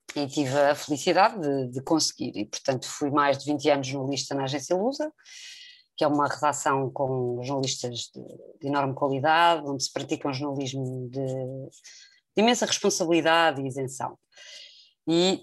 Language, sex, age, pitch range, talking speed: Portuguese, female, 20-39, 145-175 Hz, 155 wpm